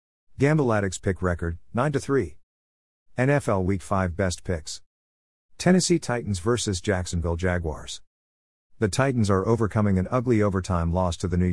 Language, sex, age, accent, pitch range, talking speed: English, male, 50-69, American, 85-115 Hz, 130 wpm